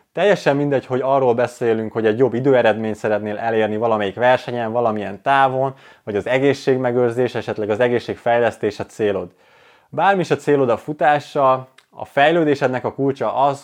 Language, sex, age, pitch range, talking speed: Hungarian, male, 20-39, 115-145 Hz, 150 wpm